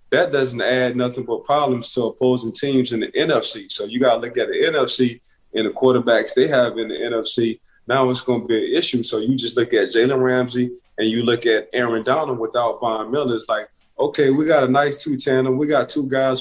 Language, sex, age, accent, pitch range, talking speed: English, male, 20-39, American, 120-135 Hz, 235 wpm